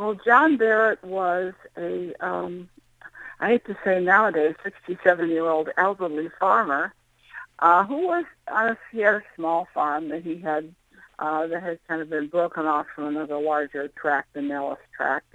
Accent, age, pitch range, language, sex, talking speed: American, 60-79, 160-205 Hz, English, female, 145 wpm